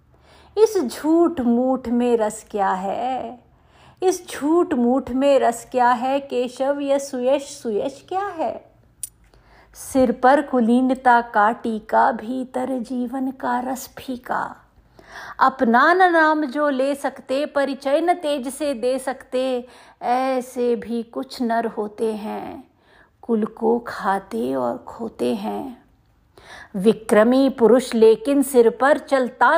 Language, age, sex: Hindi, 50-69, female